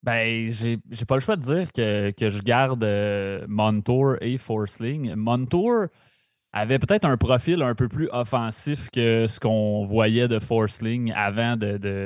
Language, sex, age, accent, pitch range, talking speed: French, male, 20-39, Canadian, 110-130 Hz, 170 wpm